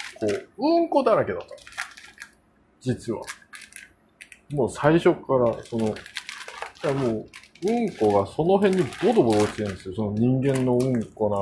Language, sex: Japanese, male